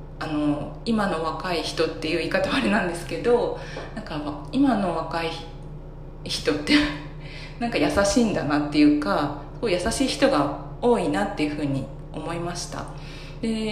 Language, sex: Japanese, female